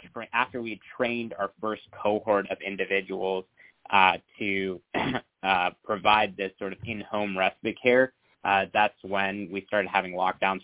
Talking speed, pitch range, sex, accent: 140 wpm, 95-105 Hz, male, American